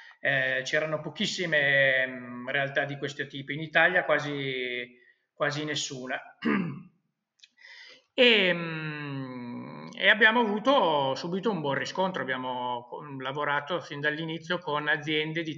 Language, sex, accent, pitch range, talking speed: Italian, male, native, 140-180 Hz, 105 wpm